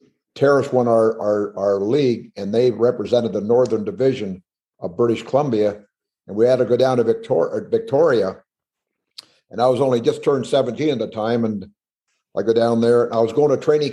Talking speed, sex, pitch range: 195 wpm, male, 115-140 Hz